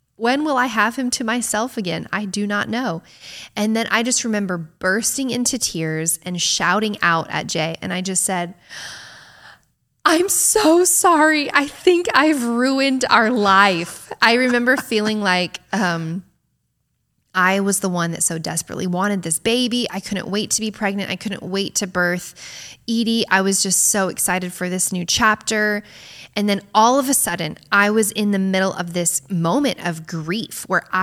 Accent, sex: American, female